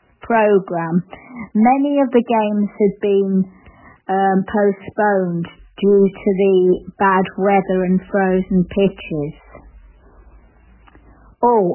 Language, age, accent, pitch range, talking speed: English, 50-69, British, 185-215 Hz, 90 wpm